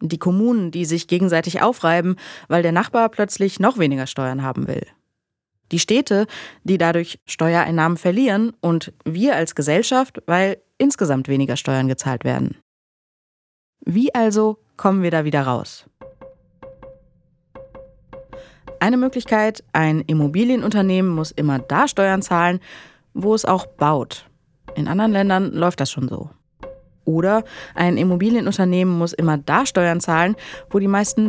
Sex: female